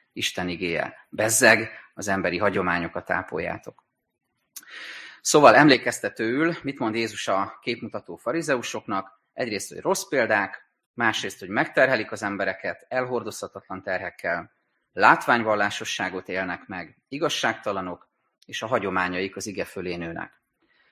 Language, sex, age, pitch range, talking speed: Hungarian, male, 30-49, 95-110 Hz, 105 wpm